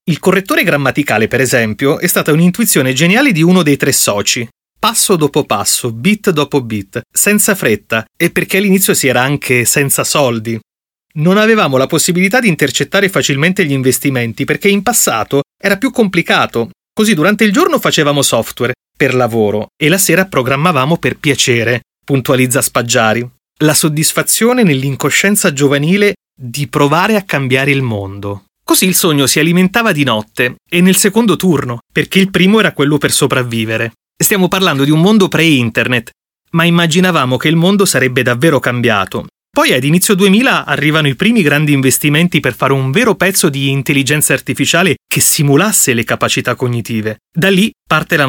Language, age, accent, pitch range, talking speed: Italian, 30-49, native, 130-185 Hz, 160 wpm